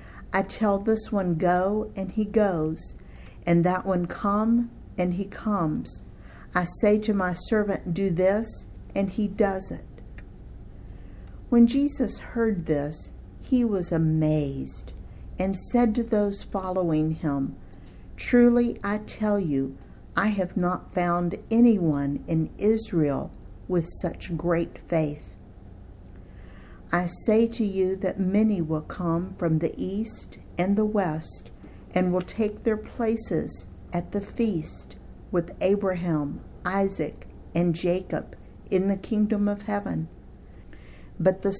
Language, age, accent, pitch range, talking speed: English, 50-69, American, 160-205 Hz, 125 wpm